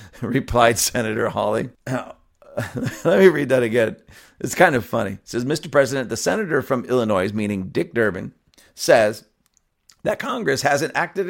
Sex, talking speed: male, 150 wpm